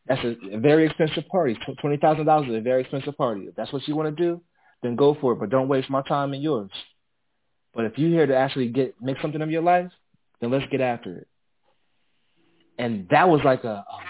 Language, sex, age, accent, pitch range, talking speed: English, male, 20-39, American, 120-145 Hz, 220 wpm